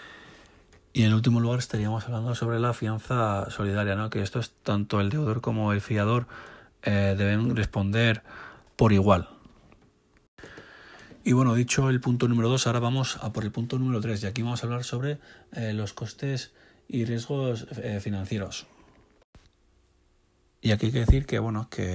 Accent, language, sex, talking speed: Spanish, Spanish, male, 160 wpm